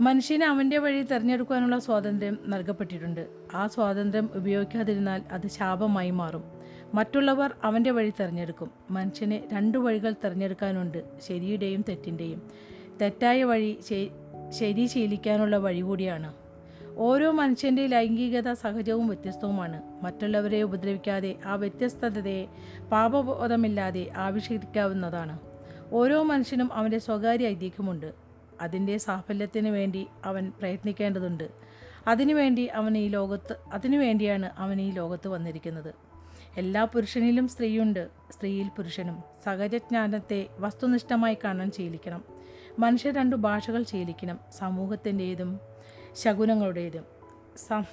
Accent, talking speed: native, 90 wpm